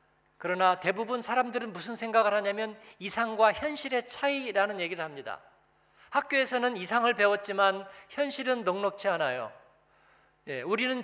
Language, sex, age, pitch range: Korean, male, 40-59, 185-240 Hz